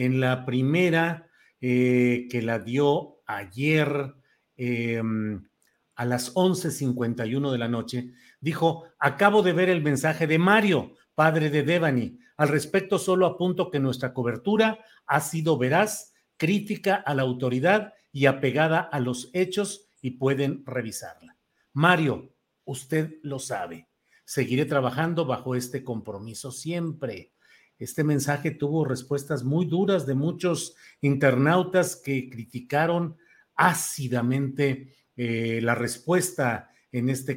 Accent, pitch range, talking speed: Mexican, 125-170 Hz, 120 wpm